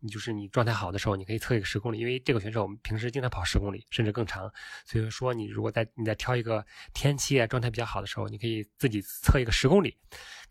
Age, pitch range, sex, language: 20-39, 105-120 Hz, male, Chinese